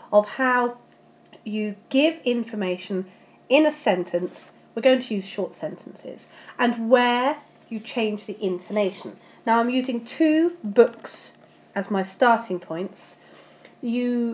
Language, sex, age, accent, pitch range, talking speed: English, female, 40-59, British, 190-250 Hz, 125 wpm